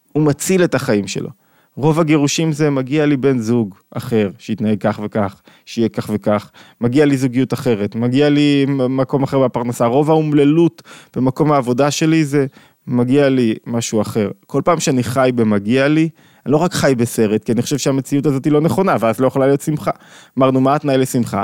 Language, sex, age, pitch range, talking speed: Hebrew, male, 20-39, 120-155 Hz, 180 wpm